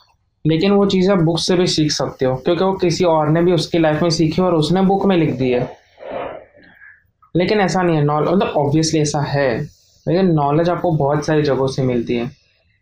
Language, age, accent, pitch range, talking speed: Hindi, 20-39, native, 145-170 Hz, 210 wpm